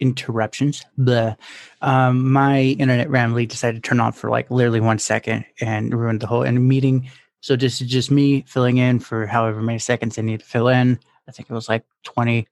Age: 20-39